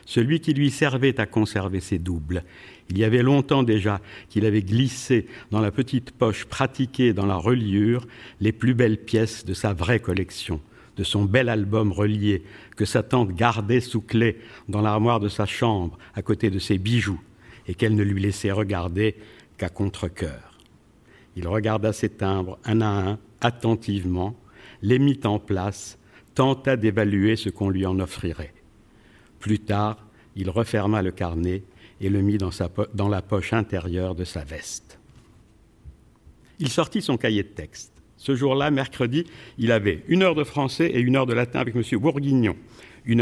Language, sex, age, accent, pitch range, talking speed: French, male, 60-79, French, 100-125 Hz, 170 wpm